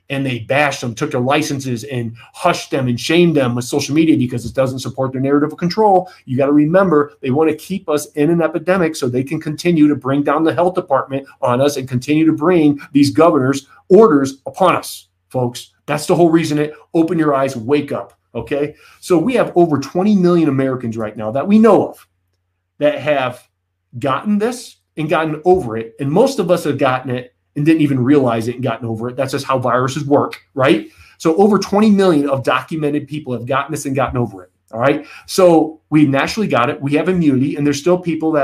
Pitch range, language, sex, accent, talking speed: 130-160 Hz, English, male, American, 220 wpm